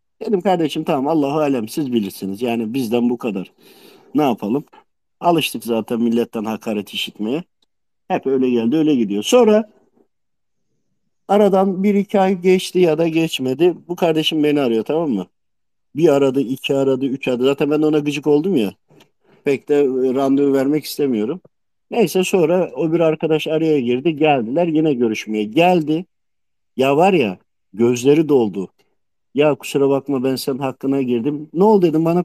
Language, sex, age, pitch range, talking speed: Turkish, male, 50-69, 135-195 Hz, 155 wpm